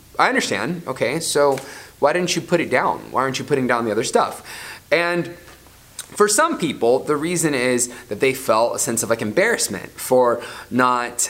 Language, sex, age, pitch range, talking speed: English, male, 20-39, 115-145 Hz, 185 wpm